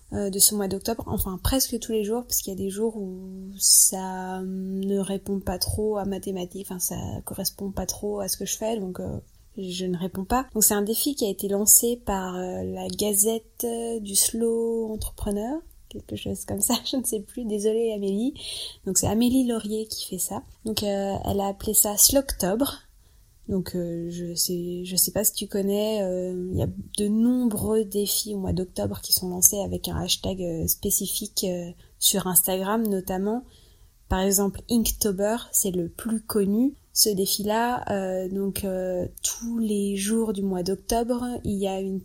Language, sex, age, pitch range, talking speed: French, female, 20-39, 185-220 Hz, 190 wpm